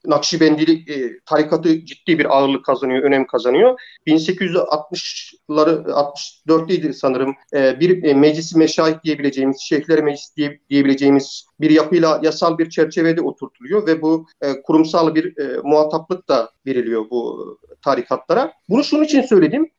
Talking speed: 110 wpm